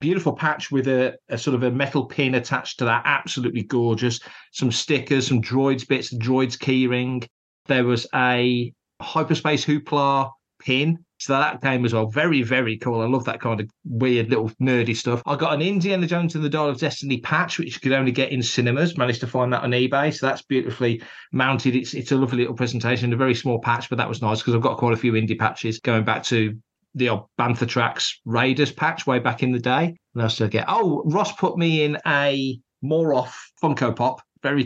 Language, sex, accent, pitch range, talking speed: English, male, British, 120-155 Hz, 215 wpm